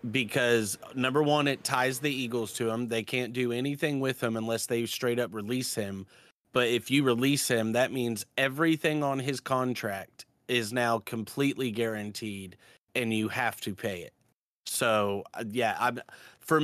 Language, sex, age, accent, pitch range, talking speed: English, male, 30-49, American, 115-140 Hz, 165 wpm